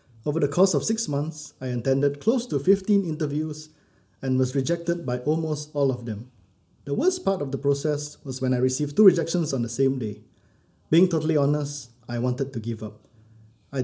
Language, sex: English, male